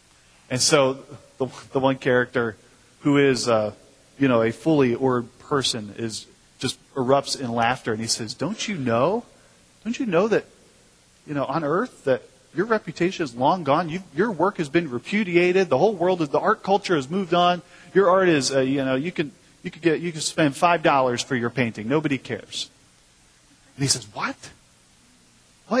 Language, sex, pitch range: English, male, 120-175 Hz